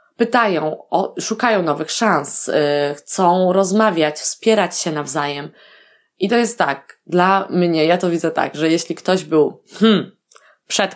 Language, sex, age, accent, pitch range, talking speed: Polish, female, 20-39, native, 155-200 Hz, 130 wpm